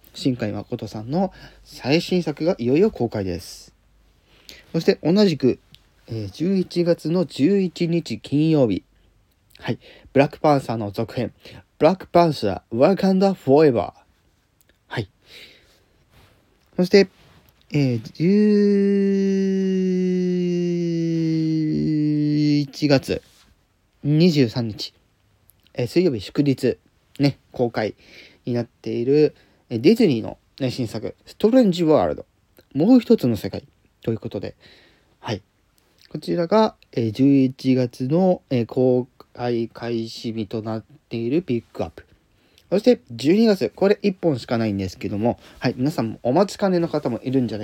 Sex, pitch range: male, 110-175 Hz